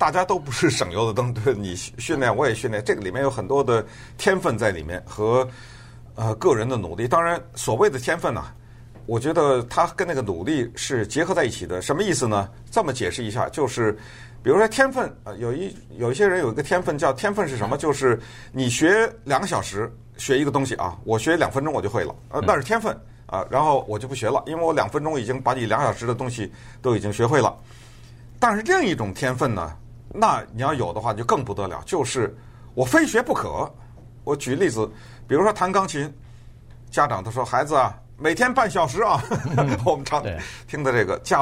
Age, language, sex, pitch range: 50-69, Chinese, male, 115-145 Hz